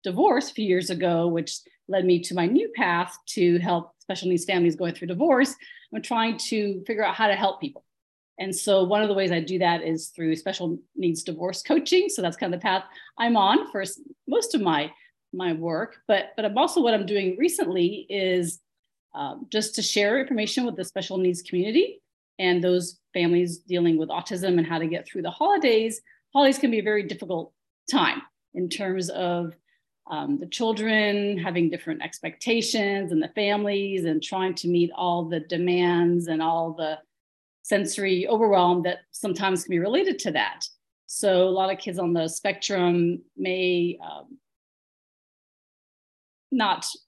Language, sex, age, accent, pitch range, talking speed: English, female, 40-59, American, 175-215 Hz, 175 wpm